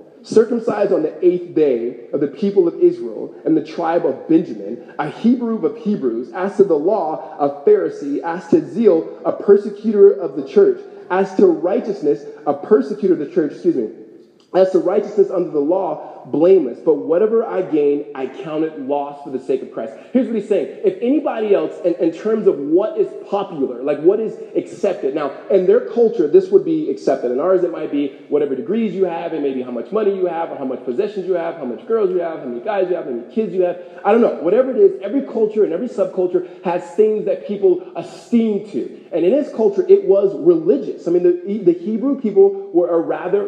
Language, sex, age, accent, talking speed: English, male, 20-39, American, 220 wpm